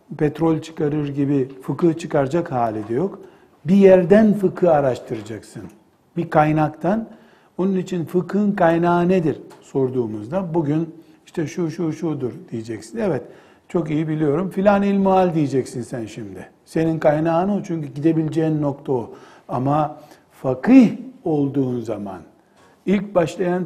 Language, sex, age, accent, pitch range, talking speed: Turkish, male, 60-79, native, 140-185 Hz, 120 wpm